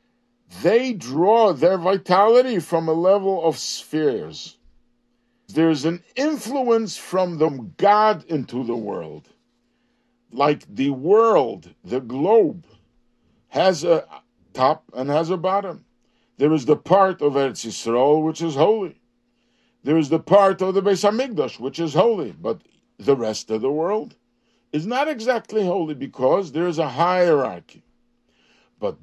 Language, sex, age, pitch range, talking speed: English, male, 60-79, 140-200 Hz, 135 wpm